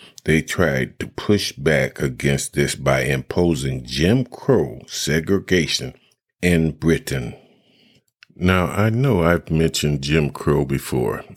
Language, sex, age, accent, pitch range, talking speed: English, male, 50-69, American, 75-90 Hz, 115 wpm